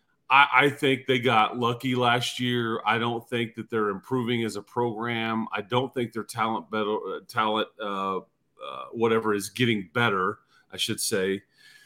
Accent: American